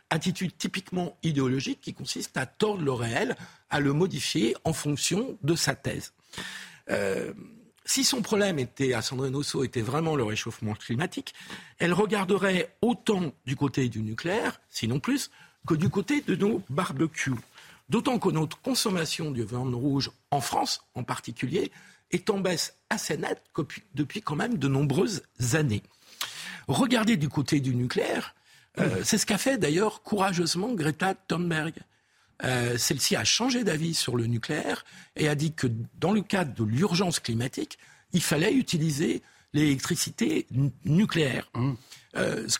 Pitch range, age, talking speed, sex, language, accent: 135-190 Hz, 50-69, 150 wpm, male, French, French